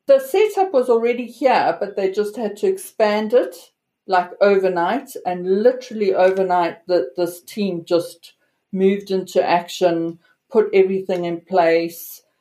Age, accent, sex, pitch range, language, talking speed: 50-69, British, female, 175-210 Hz, English, 135 wpm